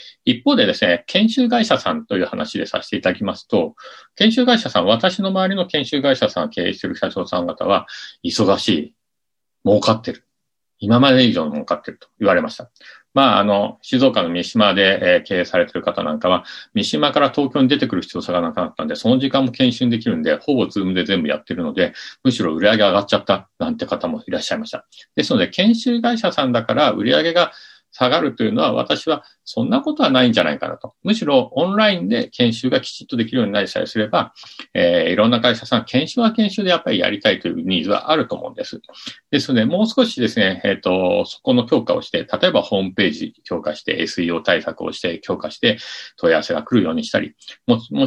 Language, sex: Japanese, male